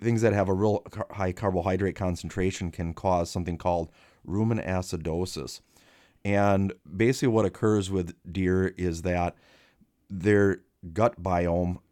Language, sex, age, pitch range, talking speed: English, male, 30-49, 90-105 Hz, 125 wpm